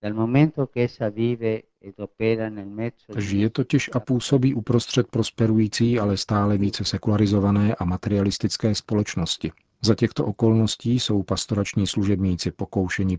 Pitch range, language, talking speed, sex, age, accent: 95-105 Hz, Czech, 90 wpm, male, 40-59, native